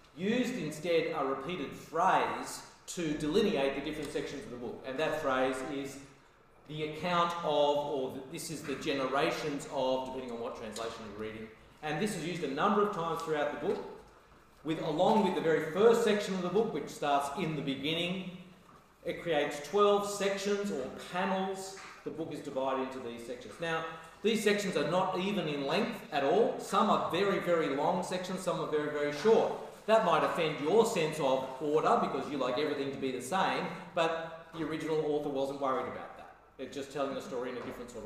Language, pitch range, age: English, 145-195 Hz, 40-59